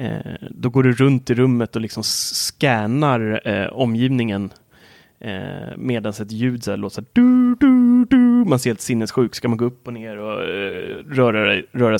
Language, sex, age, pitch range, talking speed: Swedish, male, 30-49, 110-135 Hz, 175 wpm